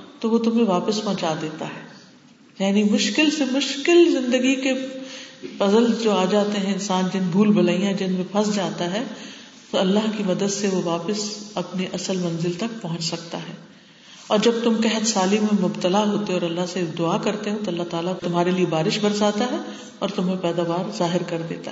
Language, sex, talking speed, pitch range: Urdu, female, 190 wpm, 185-270 Hz